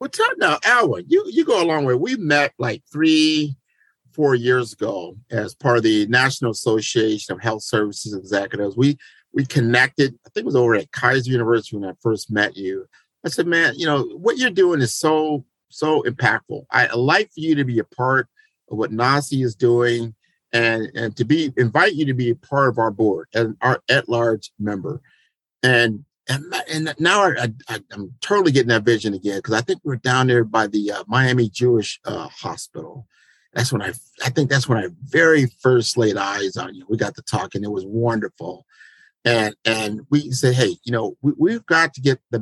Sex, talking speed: male, 210 wpm